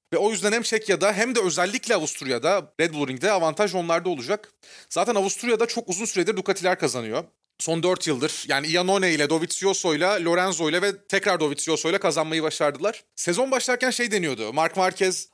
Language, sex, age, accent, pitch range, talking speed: Turkish, male, 30-49, native, 165-210 Hz, 170 wpm